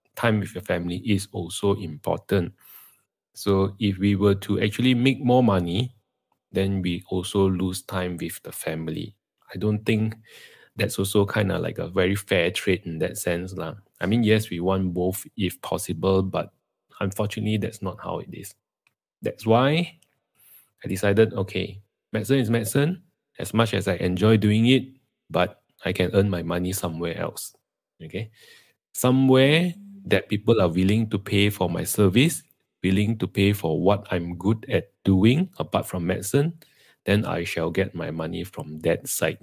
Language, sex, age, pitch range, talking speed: English, male, 20-39, 90-110 Hz, 165 wpm